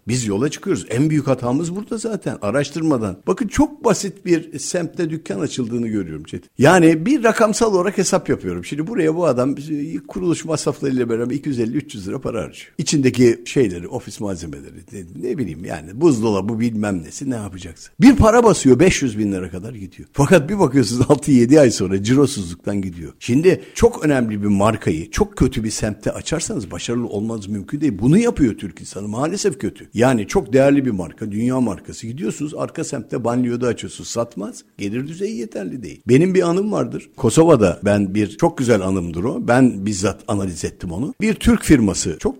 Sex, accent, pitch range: male, native, 105-160 Hz